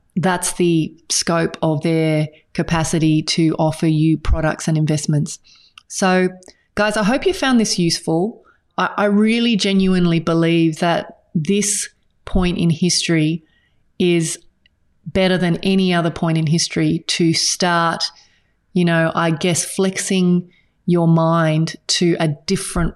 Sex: female